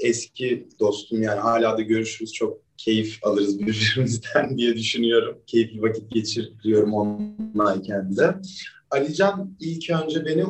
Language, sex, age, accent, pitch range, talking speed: Turkish, male, 30-49, native, 115-165 Hz, 130 wpm